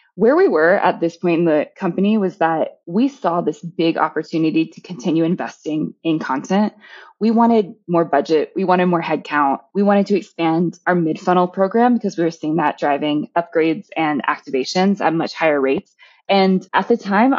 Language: English